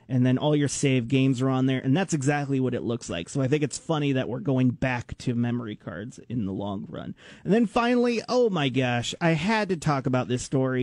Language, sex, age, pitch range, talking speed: English, male, 30-49, 130-165 Hz, 250 wpm